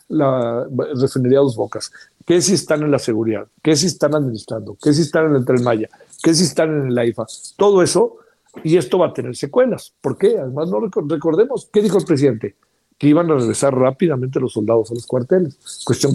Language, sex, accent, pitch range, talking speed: Spanish, male, Mexican, 125-165 Hz, 200 wpm